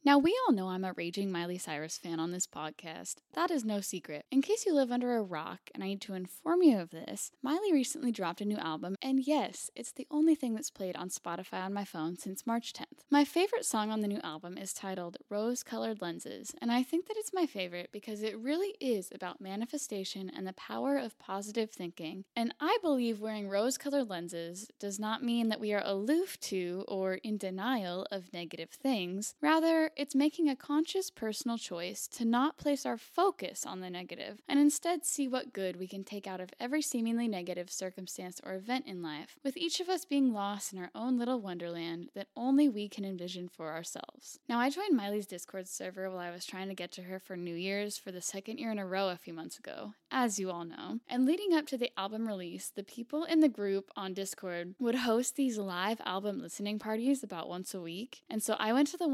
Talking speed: 220 wpm